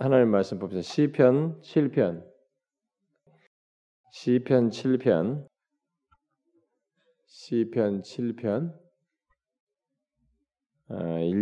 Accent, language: native, Korean